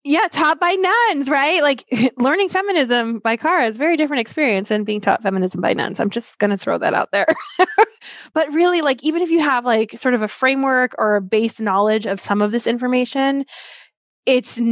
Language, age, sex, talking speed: English, 20-39, female, 210 wpm